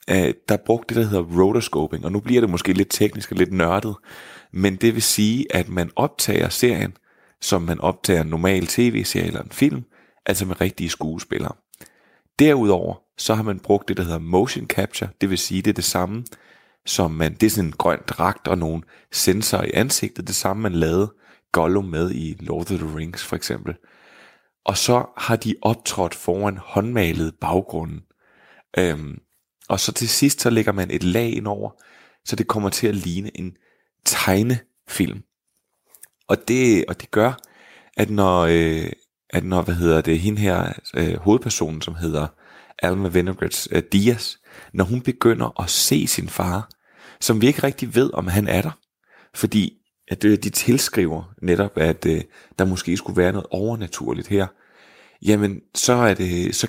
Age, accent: 30-49, native